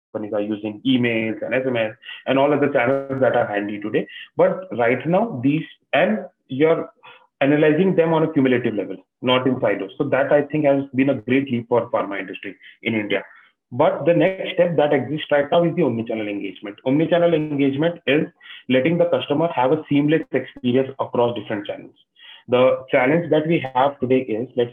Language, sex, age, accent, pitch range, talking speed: Hindi, male, 30-49, native, 125-155 Hz, 185 wpm